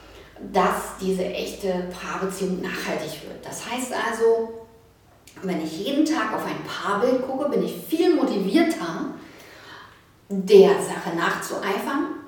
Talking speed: 115 wpm